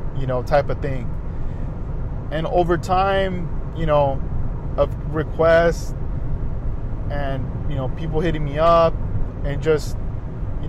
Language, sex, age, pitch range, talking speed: English, male, 20-39, 125-155 Hz, 125 wpm